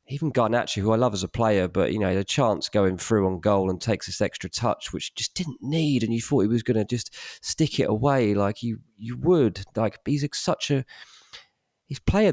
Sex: male